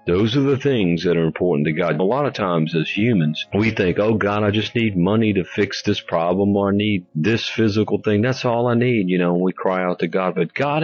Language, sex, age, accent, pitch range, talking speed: English, male, 50-69, American, 90-120 Hz, 255 wpm